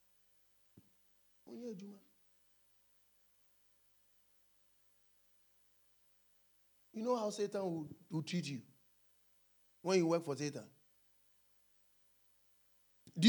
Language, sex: English, male